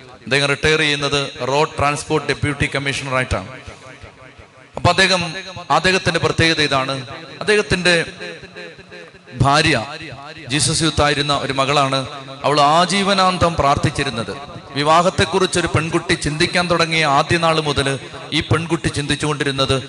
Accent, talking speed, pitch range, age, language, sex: native, 80 wpm, 135-165 Hz, 30-49, Malayalam, male